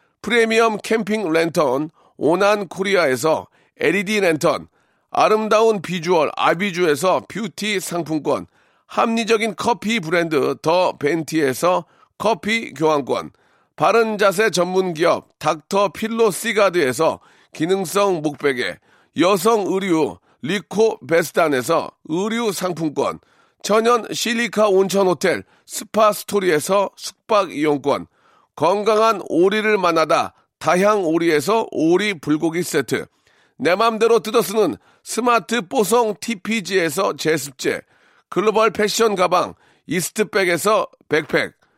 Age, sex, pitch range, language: 40-59, male, 170-220 Hz, Korean